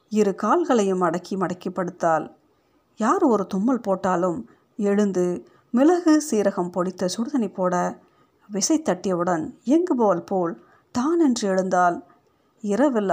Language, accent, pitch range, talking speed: Tamil, native, 185-235 Hz, 100 wpm